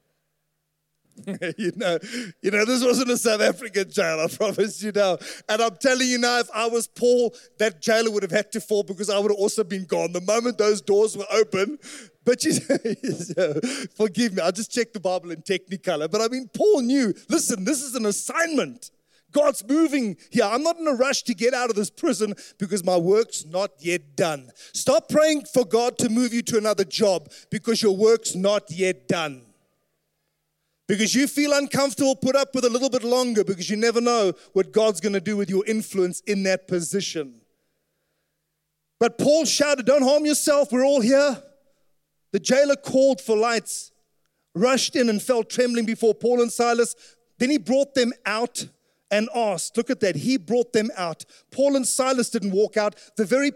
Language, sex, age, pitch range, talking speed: English, male, 30-49, 195-245 Hz, 195 wpm